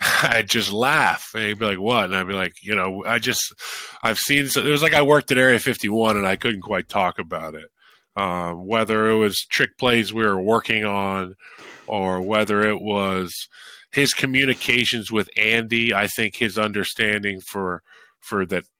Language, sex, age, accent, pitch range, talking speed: English, male, 20-39, American, 100-135 Hz, 195 wpm